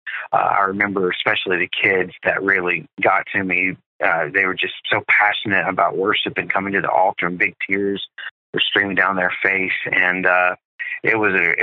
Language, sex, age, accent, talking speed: English, male, 30-49, American, 190 wpm